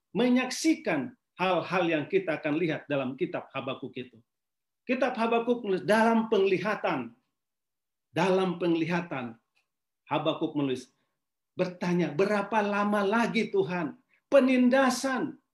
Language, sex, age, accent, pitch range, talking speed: Indonesian, male, 40-59, native, 190-260 Hz, 95 wpm